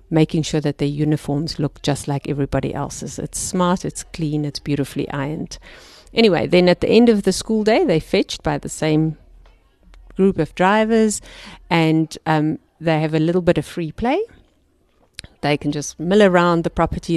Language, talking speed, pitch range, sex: English, 180 wpm, 150-175 Hz, female